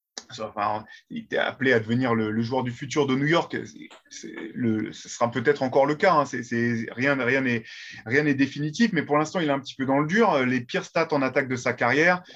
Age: 20-39